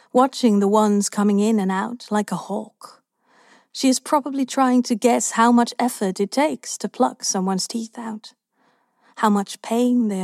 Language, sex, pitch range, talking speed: English, female, 205-245 Hz, 175 wpm